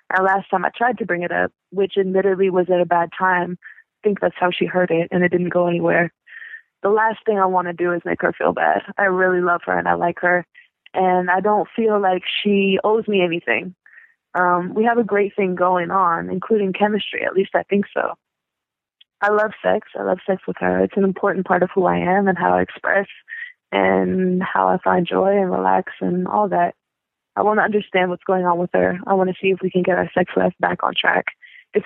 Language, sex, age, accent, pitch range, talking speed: English, female, 20-39, American, 180-205 Hz, 235 wpm